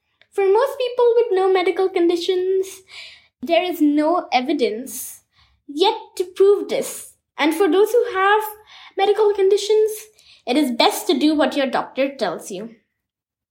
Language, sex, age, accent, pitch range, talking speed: English, female, 20-39, Indian, 265-375 Hz, 140 wpm